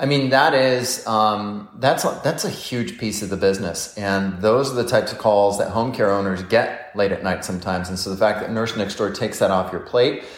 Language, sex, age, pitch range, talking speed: English, male, 30-49, 105-130 Hz, 250 wpm